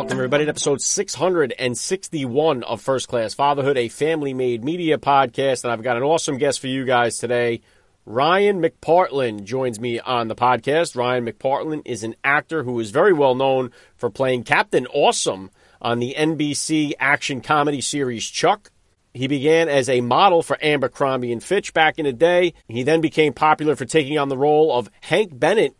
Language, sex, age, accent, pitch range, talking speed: English, male, 40-59, American, 125-160 Hz, 180 wpm